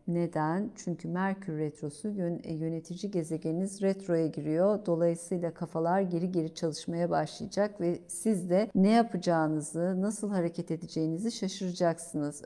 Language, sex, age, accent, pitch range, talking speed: Turkish, female, 50-69, native, 170-200 Hz, 110 wpm